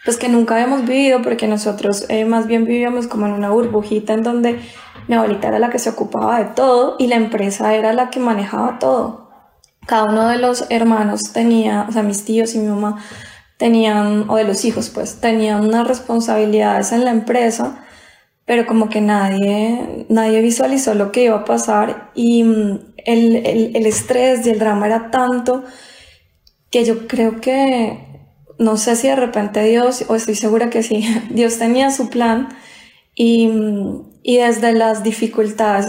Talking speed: 175 wpm